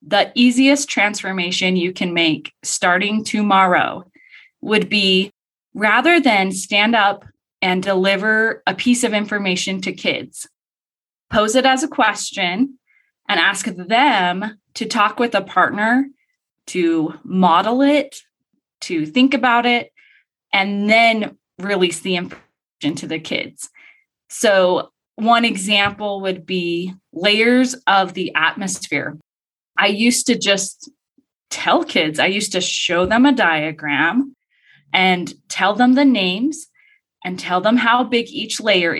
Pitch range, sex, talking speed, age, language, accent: 185-255 Hz, female, 130 wpm, 20-39, English, American